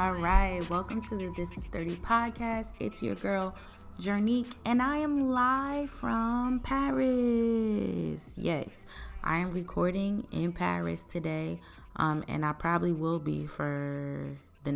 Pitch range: 140-185 Hz